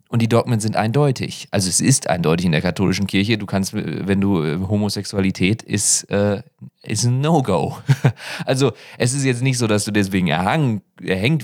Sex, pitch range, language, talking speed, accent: male, 95-120 Hz, English, 175 wpm, German